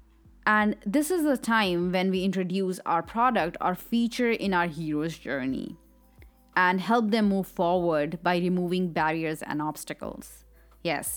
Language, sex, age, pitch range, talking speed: English, female, 20-39, 165-205 Hz, 145 wpm